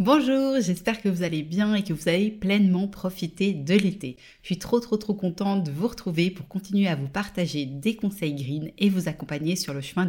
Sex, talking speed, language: female, 220 wpm, French